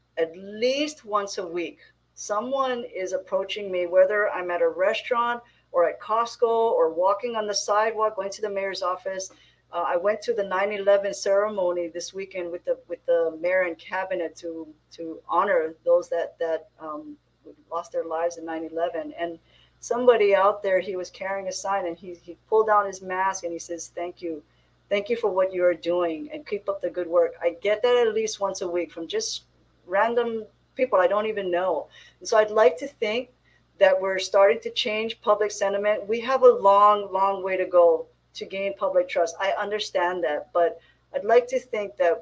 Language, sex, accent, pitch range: English, female, American, 175-225 Hz